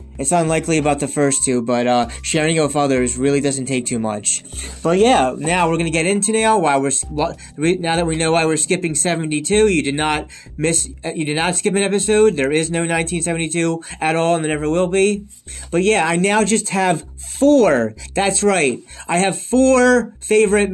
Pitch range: 145-200 Hz